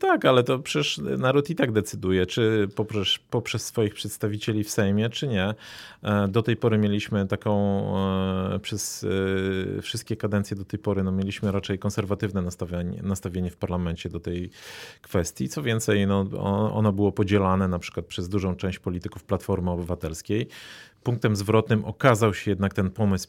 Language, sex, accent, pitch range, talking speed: Polish, male, native, 100-120 Hz, 155 wpm